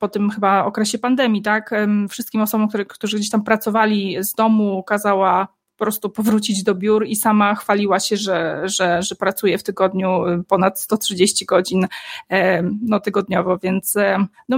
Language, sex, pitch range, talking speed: Polish, female, 200-235 Hz, 155 wpm